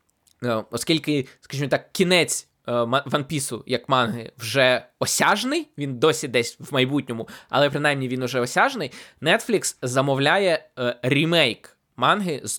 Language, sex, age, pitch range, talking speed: Ukrainian, male, 20-39, 125-160 Hz, 120 wpm